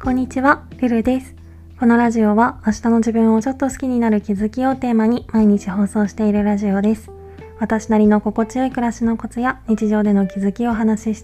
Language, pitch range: Japanese, 180-225 Hz